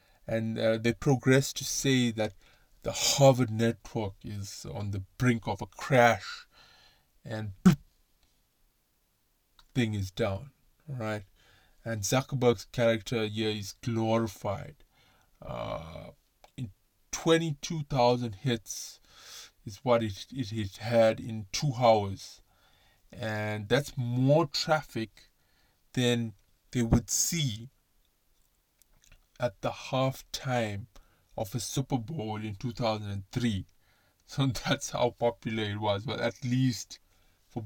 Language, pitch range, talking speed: English, 105-125 Hz, 110 wpm